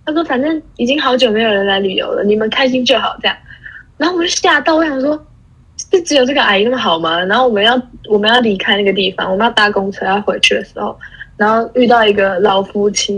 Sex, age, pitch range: female, 10-29, 205-285 Hz